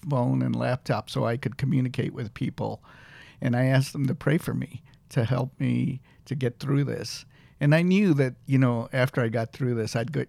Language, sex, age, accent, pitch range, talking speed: English, male, 50-69, American, 120-140 Hz, 210 wpm